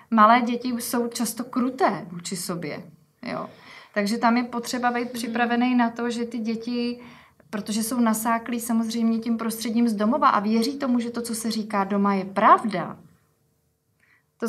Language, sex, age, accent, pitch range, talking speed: Czech, female, 20-39, native, 210-240 Hz, 160 wpm